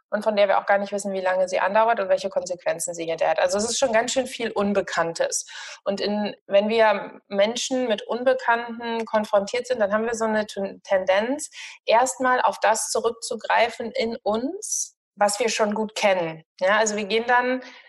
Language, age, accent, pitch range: German, 20-39, German, 200-245 Hz